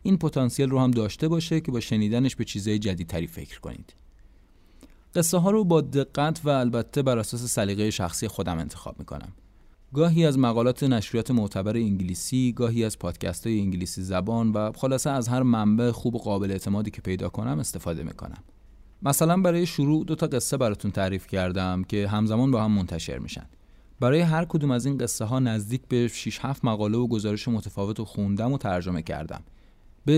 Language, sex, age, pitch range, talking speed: Persian, male, 30-49, 95-130 Hz, 180 wpm